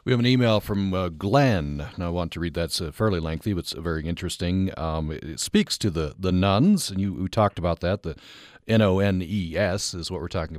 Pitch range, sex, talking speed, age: 90-110 Hz, male, 230 wpm, 40-59